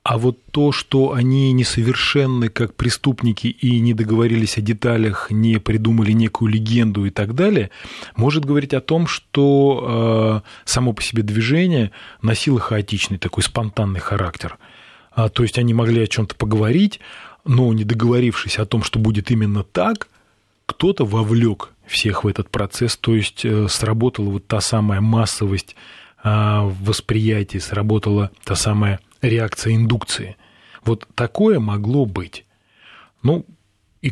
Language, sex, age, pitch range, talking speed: Russian, male, 20-39, 100-120 Hz, 130 wpm